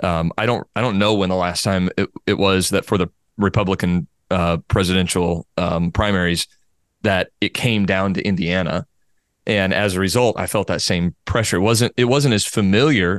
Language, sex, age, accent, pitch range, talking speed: English, male, 30-49, American, 90-105 Hz, 190 wpm